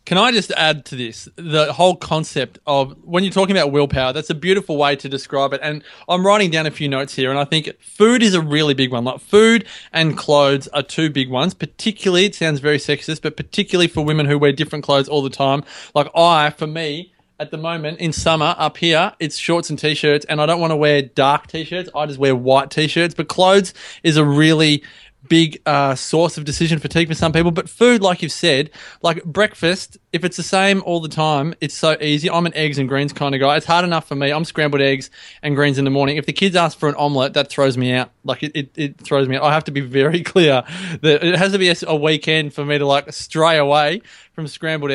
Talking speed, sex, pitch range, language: 245 wpm, male, 145-170 Hz, English